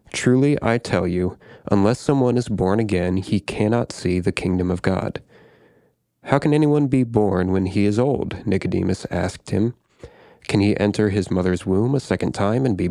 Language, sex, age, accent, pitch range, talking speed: English, male, 30-49, American, 90-115 Hz, 180 wpm